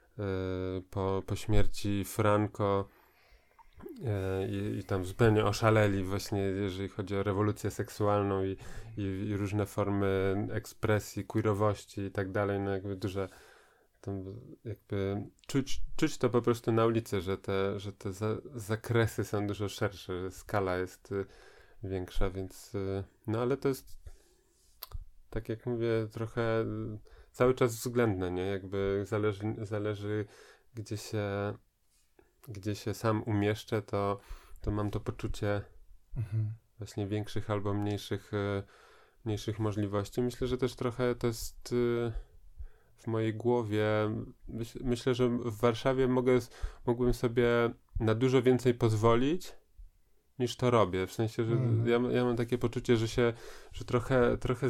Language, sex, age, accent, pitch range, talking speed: Polish, male, 20-39, native, 100-120 Hz, 130 wpm